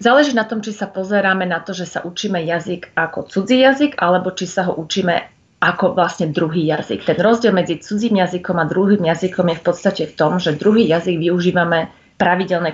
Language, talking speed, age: Slovak, 205 wpm, 30-49